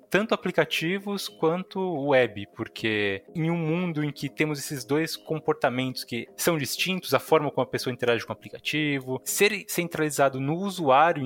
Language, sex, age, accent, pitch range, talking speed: Portuguese, male, 20-39, Brazilian, 125-170 Hz, 160 wpm